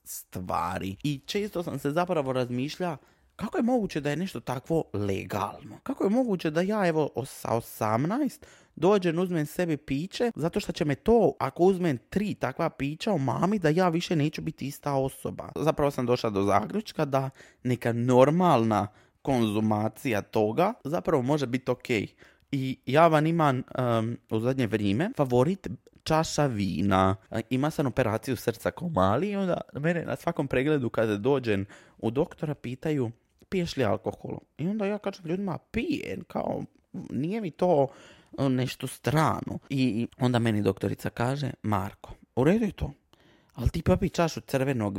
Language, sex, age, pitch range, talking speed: Croatian, male, 20-39, 120-170 Hz, 155 wpm